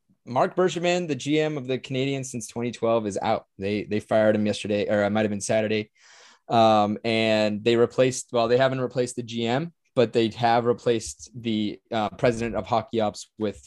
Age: 20-39